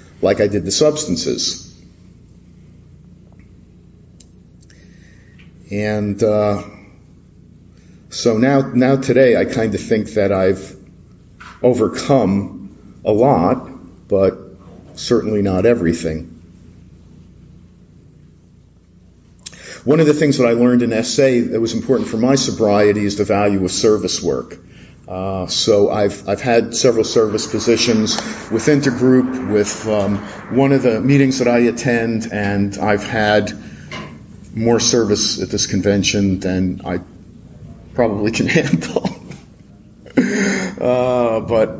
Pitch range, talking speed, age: 95-120 Hz, 120 wpm, 50-69